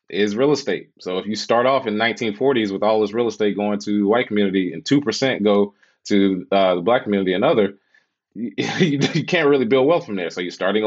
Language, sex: English, male